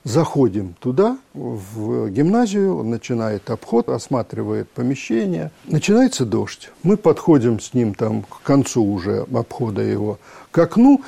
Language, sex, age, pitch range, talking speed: Russian, male, 50-69, 115-170 Hz, 125 wpm